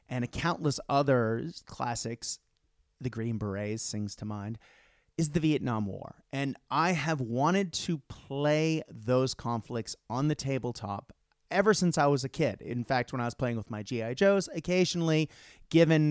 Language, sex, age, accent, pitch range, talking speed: English, male, 30-49, American, 115-150 Hz, 160 wpm